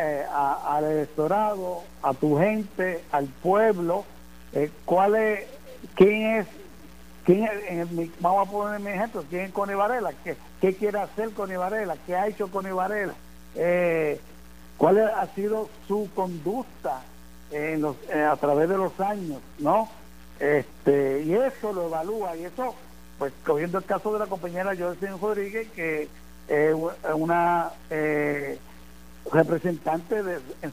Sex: male